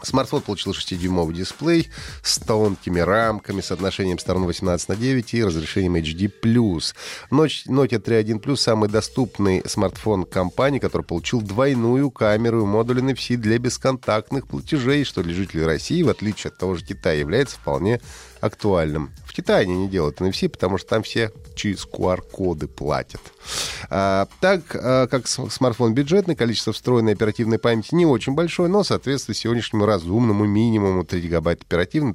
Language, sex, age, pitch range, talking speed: Russian, male, 30-49, 90-120 Hz, 145 wpm